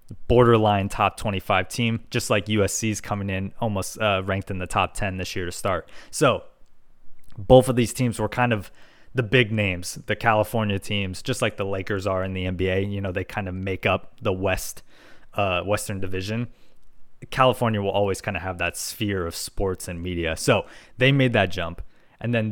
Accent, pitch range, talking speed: American, 100-125 Hz, 195 wpm